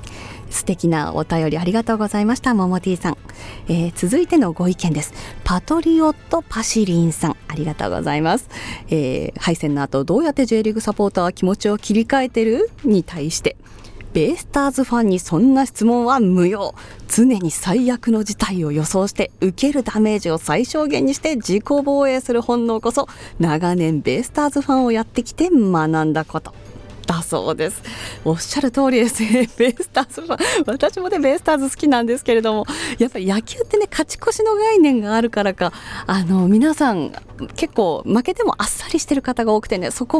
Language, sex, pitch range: Japanese, female, 175-260 Hz